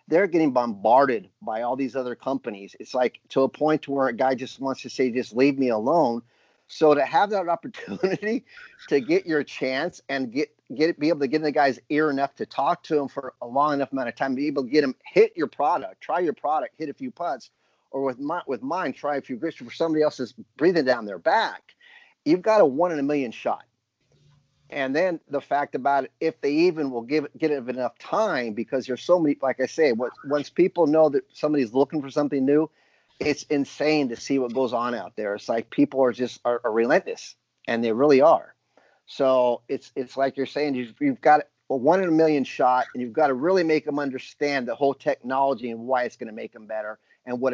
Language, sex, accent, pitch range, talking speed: English, male, American, 130-155 Hz, 235 wpm